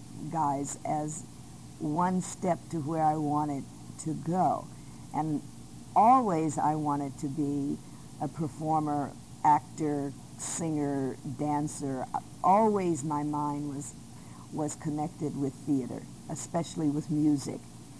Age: 50-69